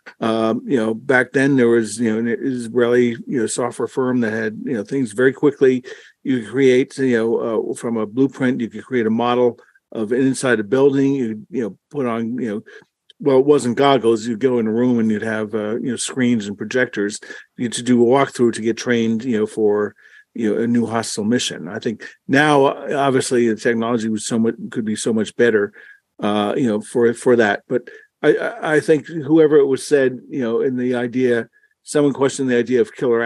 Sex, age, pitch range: male, 50-69, 115-140 Hz